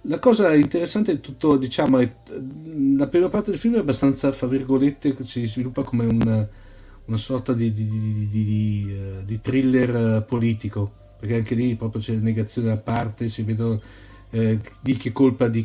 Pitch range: 110-135 Hz